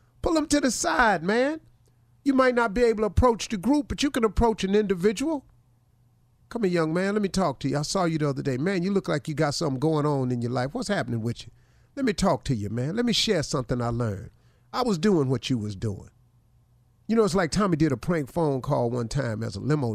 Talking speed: 260 wpm